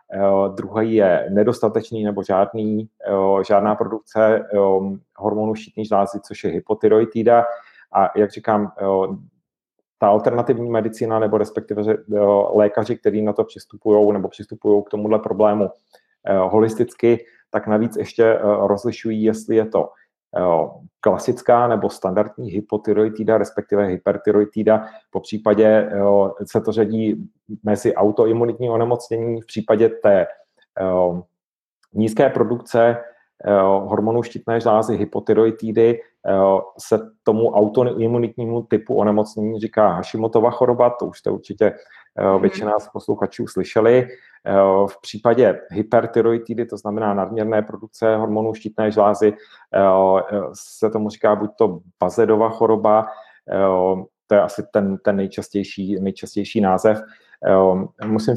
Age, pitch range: 40-59, 100-115 Hz